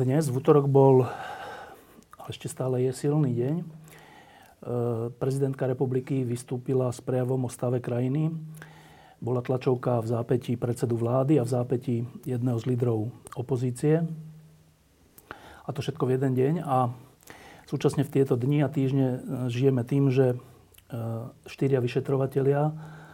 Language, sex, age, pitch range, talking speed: Slovak, male, 40-59, 120-135 Hz, 125 wpm